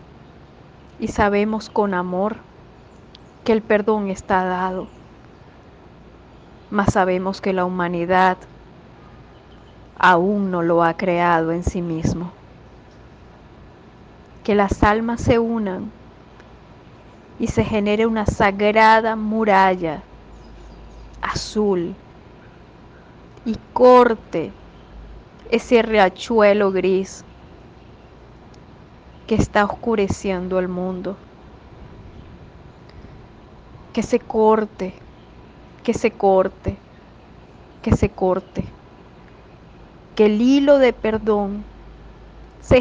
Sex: female